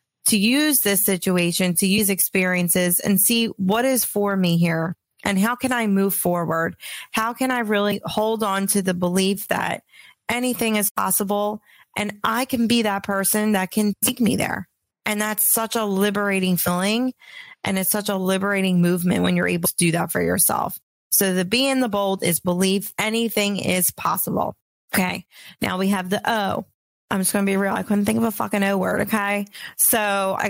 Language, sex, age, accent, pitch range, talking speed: English, female, 30-49, American, 185-225 Hz, 195 wpm